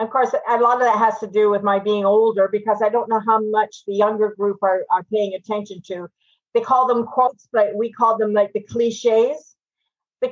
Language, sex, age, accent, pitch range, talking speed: English, female, 50-69, American, 205-240 Hz, 225 wpm